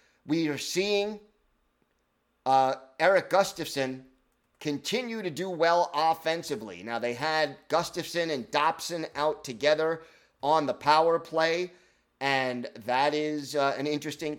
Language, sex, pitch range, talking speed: English, male, 140-170 Hz, 120 wpm